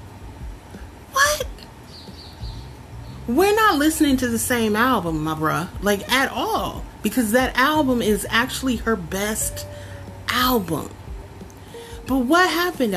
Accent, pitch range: American, 155-255 Hz